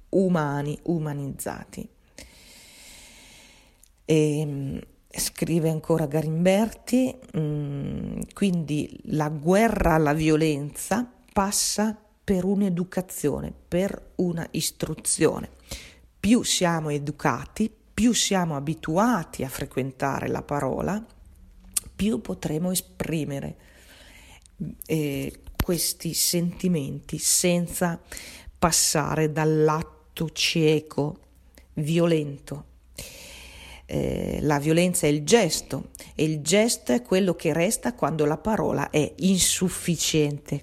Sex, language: female, Italian